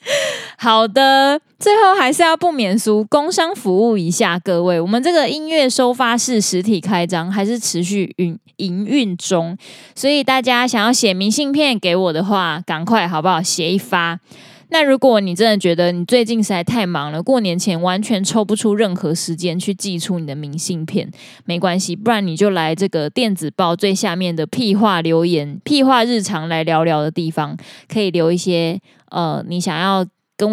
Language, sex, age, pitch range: Chinese, female, 20-39, 175-225 Hz